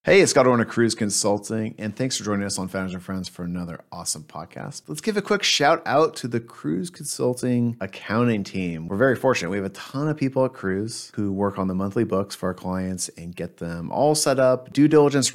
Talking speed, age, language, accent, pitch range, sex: 230 wpm, 30-49, English, American, 95-120 Hz, male